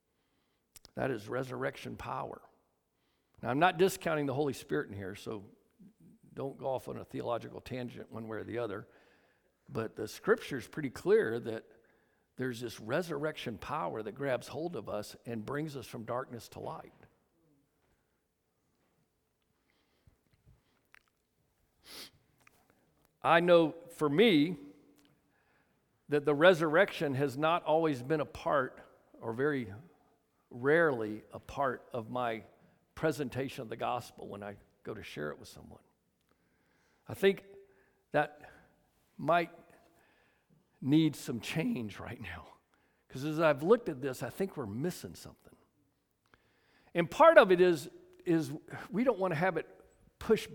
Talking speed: 135 wpm